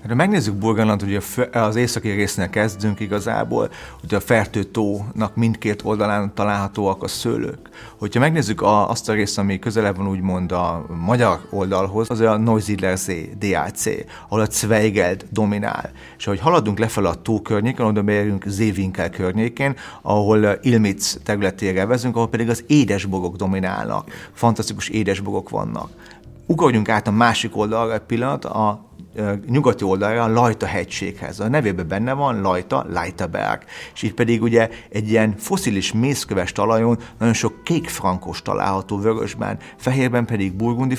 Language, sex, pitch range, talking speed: Hungarian, male, 100-115 Hz, 145 wpm